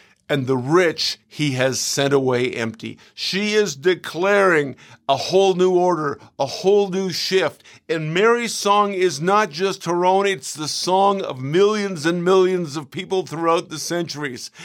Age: 50-69